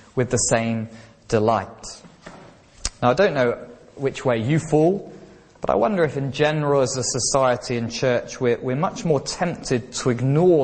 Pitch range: 125-160 Hz